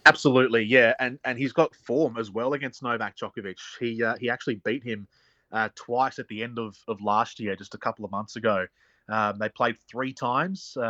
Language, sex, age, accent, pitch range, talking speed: English, male, 20-39, Australian, 105-120 Hz, 210 wpm